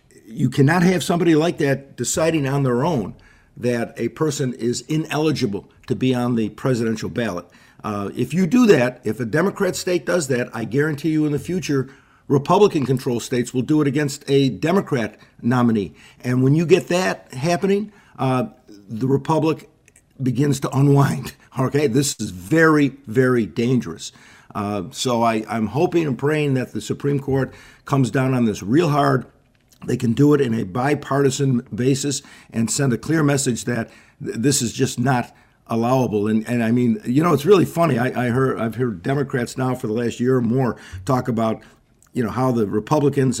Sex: male